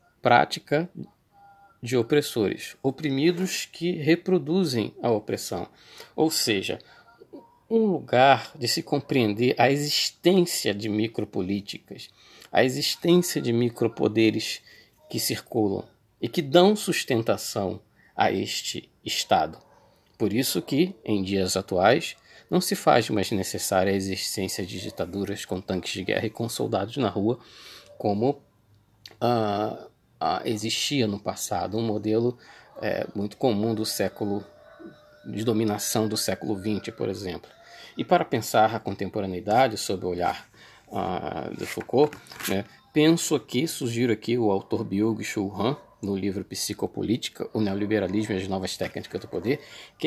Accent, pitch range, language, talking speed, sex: Brazilian, 105-145 Hz, Portuguese, 130 wpm, male